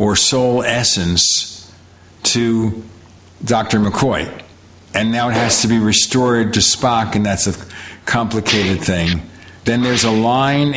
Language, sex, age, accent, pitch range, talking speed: English, male, 50-69, American, 100-120 Hz, 135 wpm